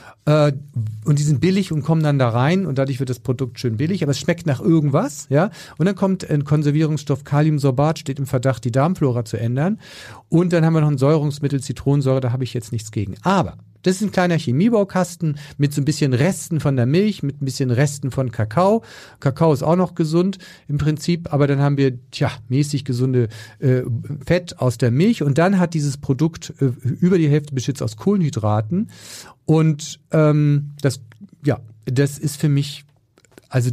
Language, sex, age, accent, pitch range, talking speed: German, male, 40-59, German, 130-165 Hz, 195 wpm